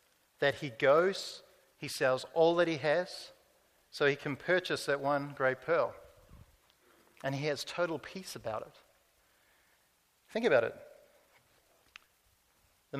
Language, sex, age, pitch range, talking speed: English, male, 50-69, 140-170 Hz, 130 wpm